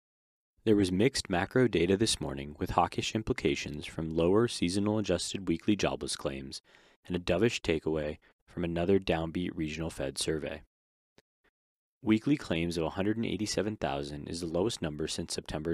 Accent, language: American, English